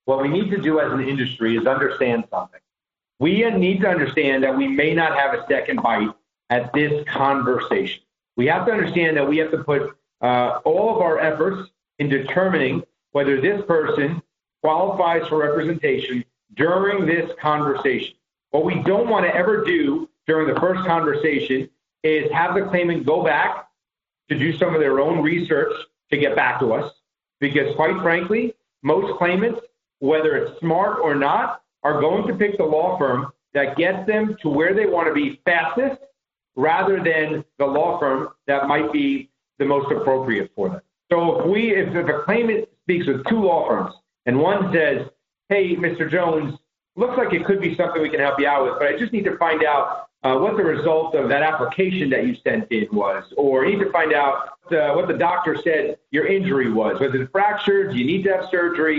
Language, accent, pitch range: English, American, 140-195 Hz